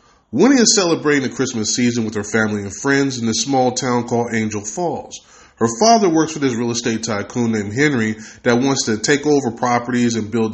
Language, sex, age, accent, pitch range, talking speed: English, male, 20-39, American, 115-150 Hz, 205 wpm